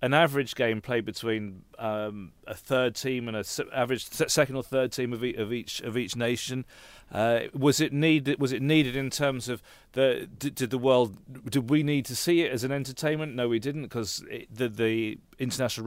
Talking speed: 210 wpm